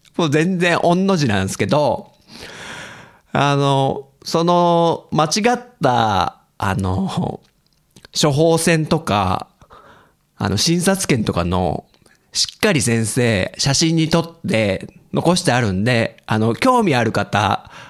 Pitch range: 115-170 Hz